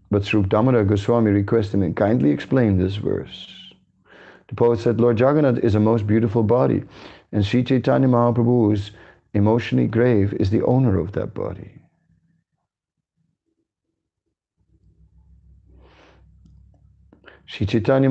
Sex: male